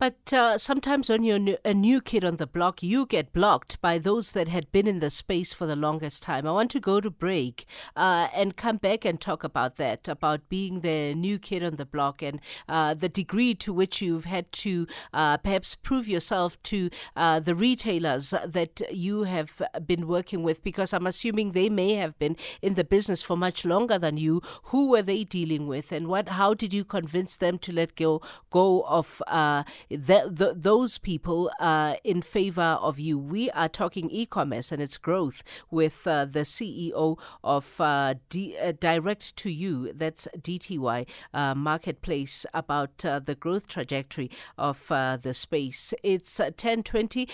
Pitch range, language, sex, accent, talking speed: 155-195 Hz, English, female, South African, 190 wpm